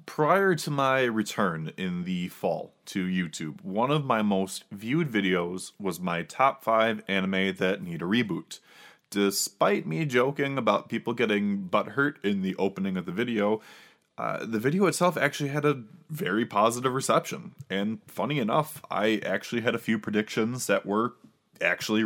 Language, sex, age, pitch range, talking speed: English, male, 20-39, 100-145 Hz, 165 wpm